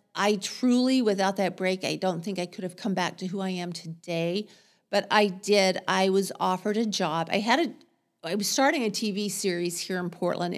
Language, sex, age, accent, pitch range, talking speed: English, female, 40-59, American, 185-220 Hz, 215 wpm